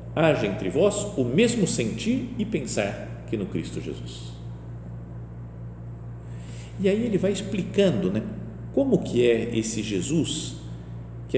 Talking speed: 125 wpm